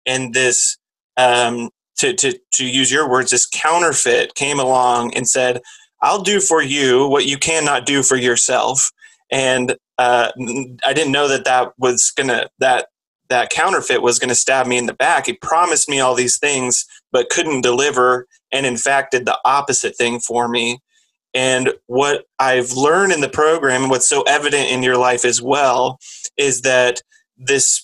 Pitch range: 125-150 Hz